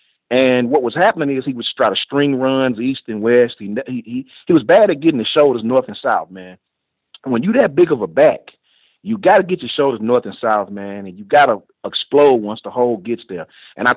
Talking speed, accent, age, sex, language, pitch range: 245 wpm, American, 40-59, male, English, 115-170 Hz